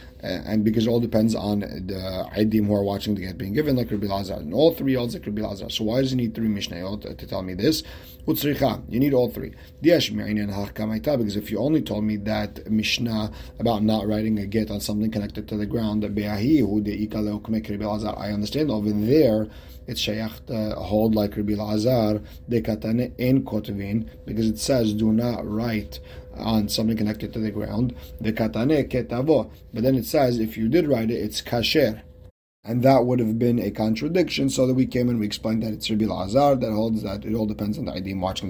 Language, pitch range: English, 105-115 Hz